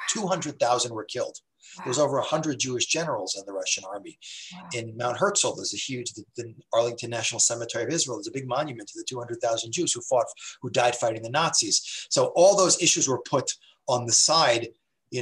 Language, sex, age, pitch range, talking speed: English, male, 30-49, 115-145 Hz, 195 wpm